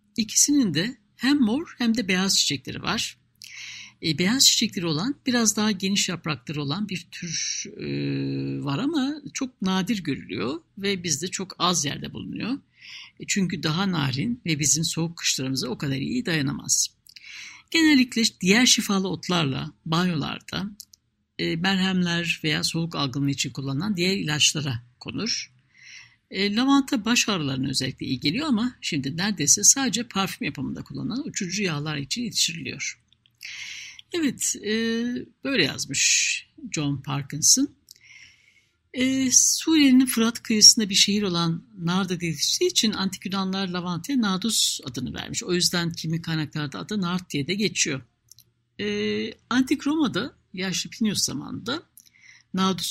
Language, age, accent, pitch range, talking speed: Turkish, 60-79, native, 155-230 Hz, 130 wpm